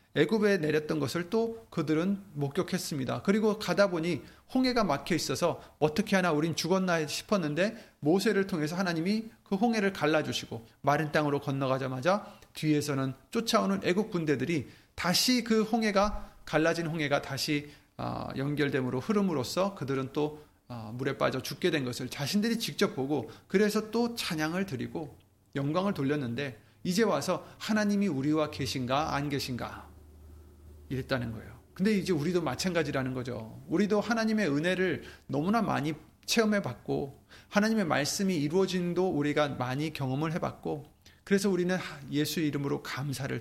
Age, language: 30-49, Korean